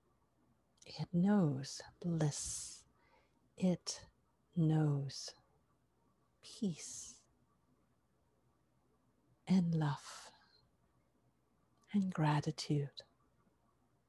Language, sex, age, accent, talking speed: English, female, 50-69, American, 45 wpm